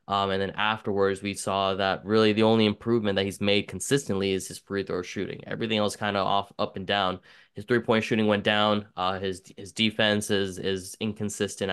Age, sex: 10-29, male